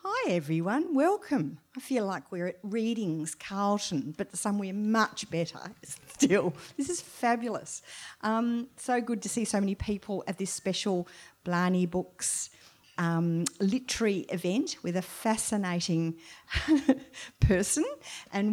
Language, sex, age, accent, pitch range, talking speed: English, female, 50-69, Australian, 170-220 Hz, 125 wpm